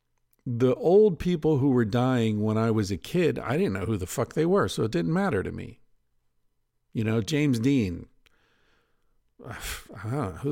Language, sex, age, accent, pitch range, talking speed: English, male, 50-69, American, 105-135 Hz, 170 wpm